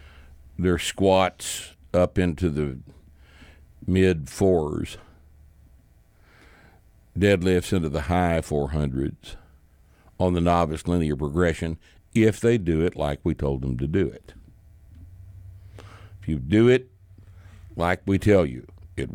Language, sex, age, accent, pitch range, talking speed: English, male, 60-79, American, 75-95 Hz, 115 wpm